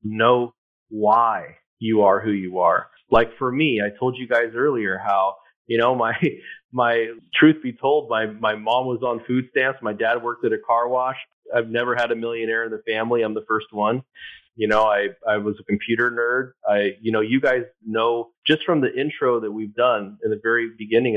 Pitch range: 110-150 Hz